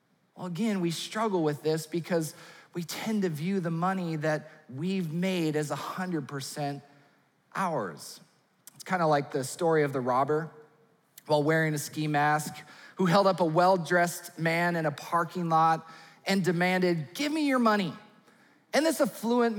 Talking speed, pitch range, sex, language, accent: 155 wpm, 170-245 Hz, male, English, American